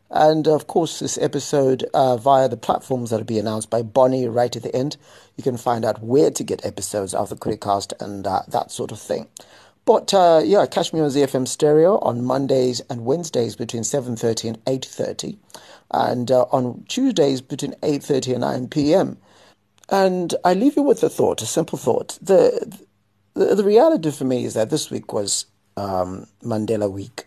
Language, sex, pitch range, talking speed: English, male, 110-145 Hz, 185 wpm